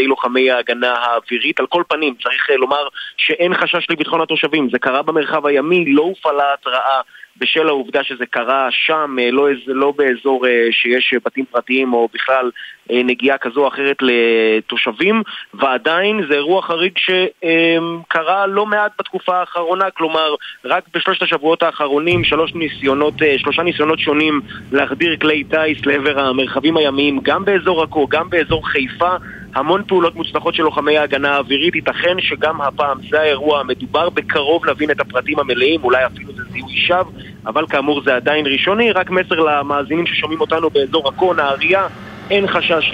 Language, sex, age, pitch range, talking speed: Hebrew, male, 30-49, 140-170 Hz, 145 wpm